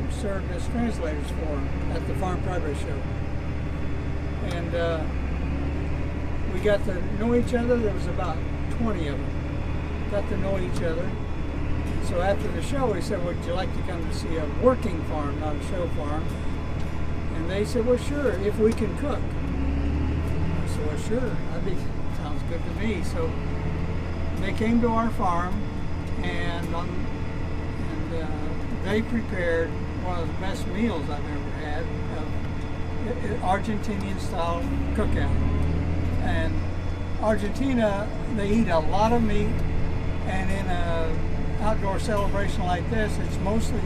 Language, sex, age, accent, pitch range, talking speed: English, male, 60-79, American, 75-90 Hz, 140 wpm